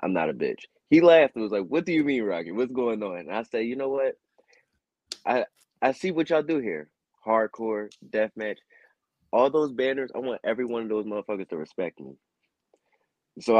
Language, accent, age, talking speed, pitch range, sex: English, American, 20-39, 205 wpm, 95-120 Hz, male